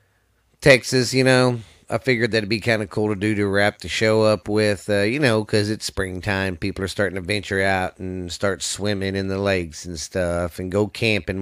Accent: American